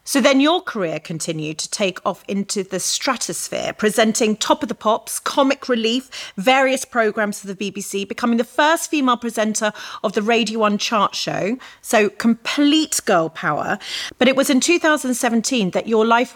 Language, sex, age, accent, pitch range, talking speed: English, female, 30-49, British, 200-255 Hz, 170 wpm